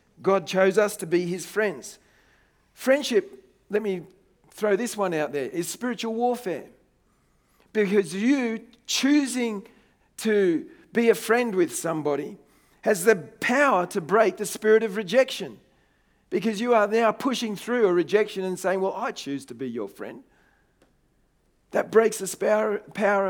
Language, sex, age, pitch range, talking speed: English, male, 40-59, 190-230 Hz, 145 wpm